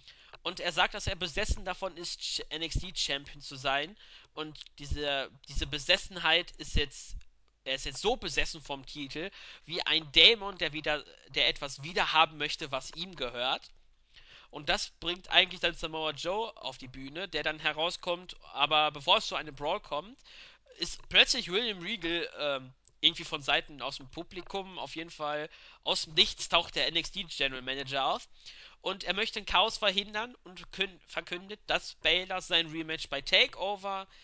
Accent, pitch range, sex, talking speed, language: German, 140-175 Hz, male, 165 wpm, German